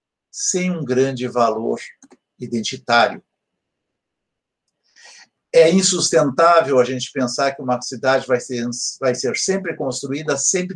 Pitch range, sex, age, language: 140-195 Hz, male, 60-79, Portuguese